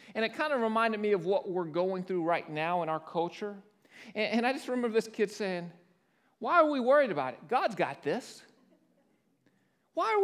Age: 40-59